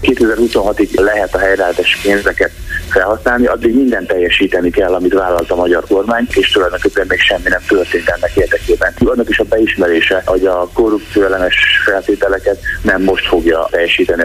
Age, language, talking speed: 30-49, Hungarian, 145 wpm